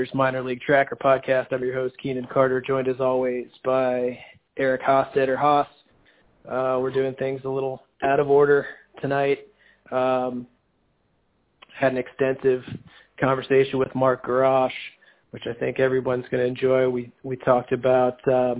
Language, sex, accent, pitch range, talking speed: English, male, American, 125-135 Hz, 150 wpm